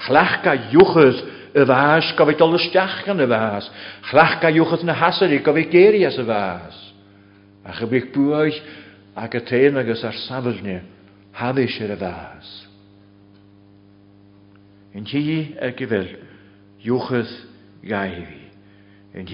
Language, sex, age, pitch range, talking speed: English, male, 60-79, 100-130 Hz, 95 wpm